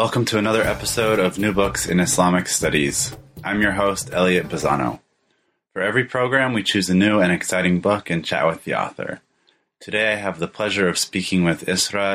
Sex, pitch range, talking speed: male, 85-95 Hz, 195 wpm